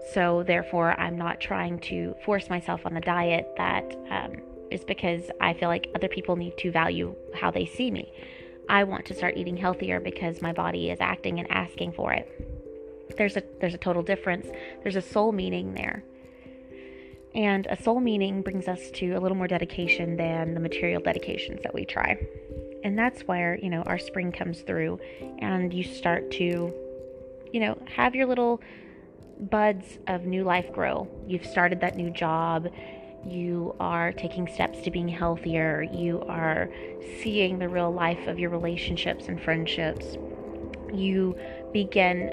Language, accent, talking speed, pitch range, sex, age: English, American, 165 wpm, 130-190 Hz, female, 20-39